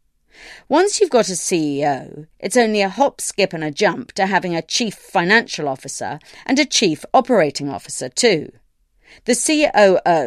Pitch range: 160-230 Hz